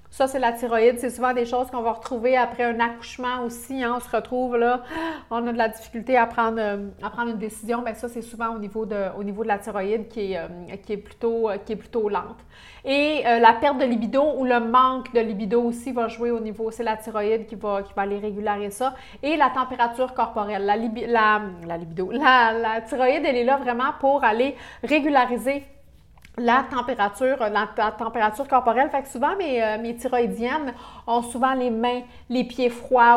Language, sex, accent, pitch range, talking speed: French, female, Canadian, 220-255 Hz, 195 wpm